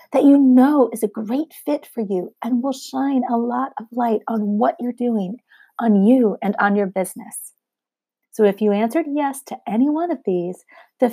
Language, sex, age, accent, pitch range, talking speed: English, female, 40-59, American, 205-265 Hz, 200 wpm